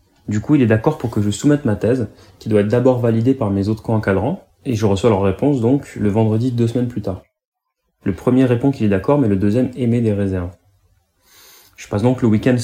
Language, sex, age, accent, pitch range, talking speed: French, male, 20-39, French, 100-125 Hz, 235 wpm